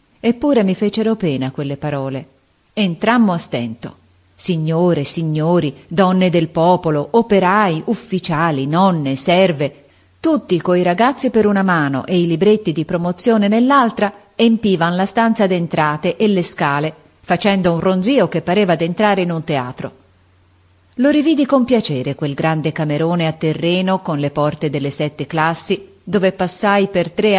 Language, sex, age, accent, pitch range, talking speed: Italian, female, 30-49, native, 150-205 Hz, 145 wpm